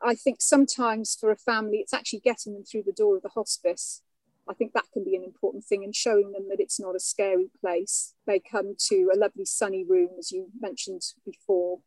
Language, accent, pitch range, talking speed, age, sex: English, British, 195-245 Hz, 220 wpm, 40-59, female